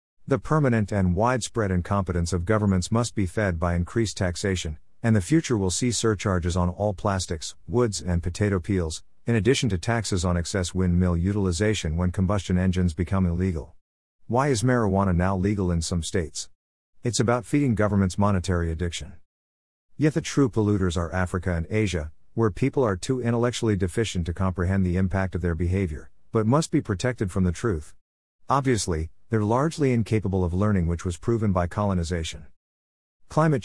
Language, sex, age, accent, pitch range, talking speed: English, male, 50-69, American, 90-110 Hz, 165 wpm